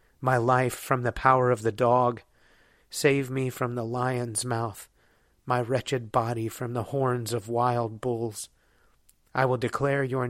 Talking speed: 155 wpm